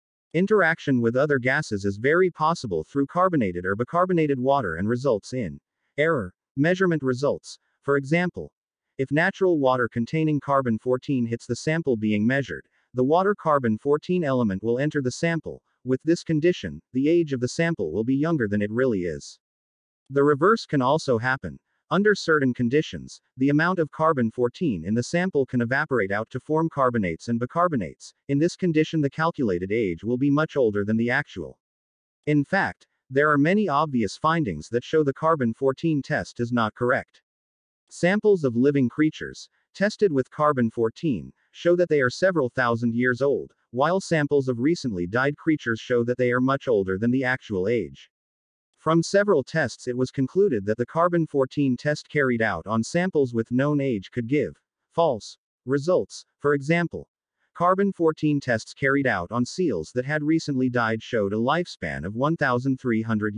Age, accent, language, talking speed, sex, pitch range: 40-59, American, English, 165 wpm, male, 120-155 Hz